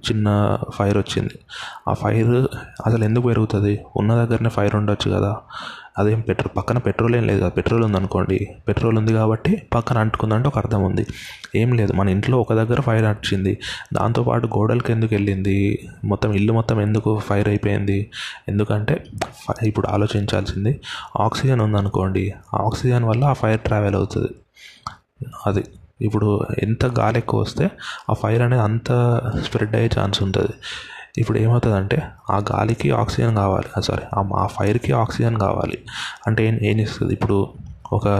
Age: 20-39